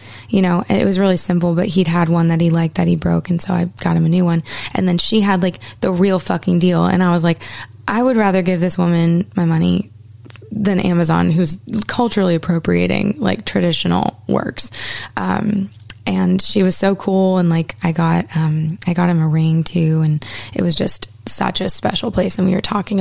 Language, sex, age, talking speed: English, female, 20-39, 210 wpm